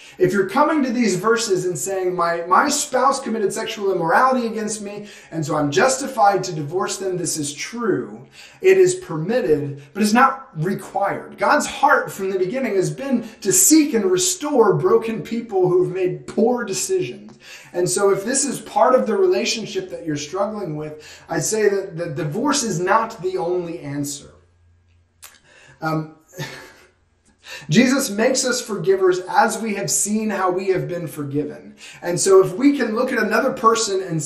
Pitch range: 145-215 Hz